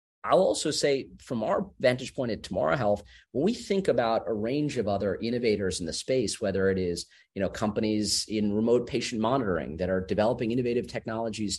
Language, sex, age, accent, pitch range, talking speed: English, male, 40-59, American, 100-120 Hz, 190 wpm